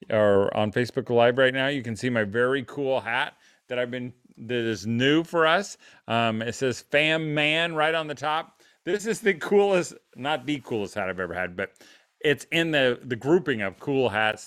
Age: 40-59